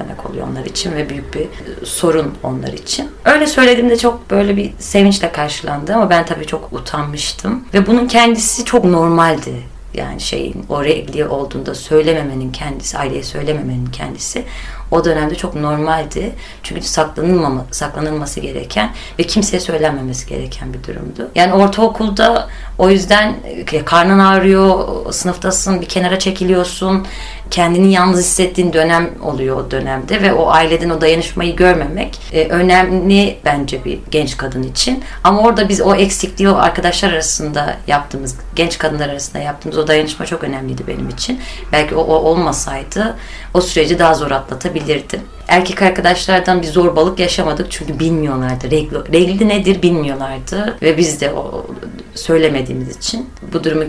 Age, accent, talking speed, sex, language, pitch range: 30-49, native, 140 wpm, female, Turkish, 150-190 Hz